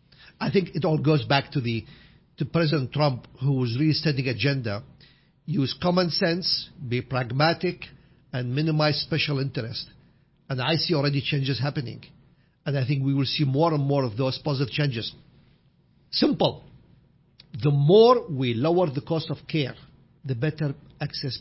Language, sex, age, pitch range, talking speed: English, male, 50-69, 135-180 Hz, 155 wpm